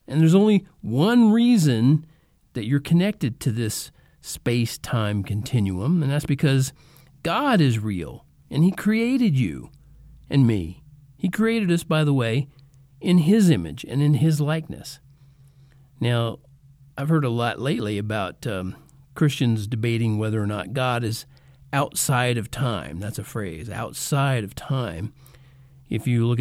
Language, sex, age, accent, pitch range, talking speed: English, male, 40-59, American, 120-155 Hz, 145 wpm